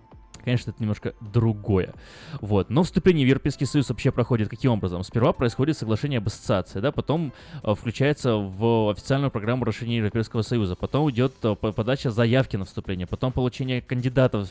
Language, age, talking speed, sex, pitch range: Russian, 20-39, 160 wpm, male, 105-125 Hz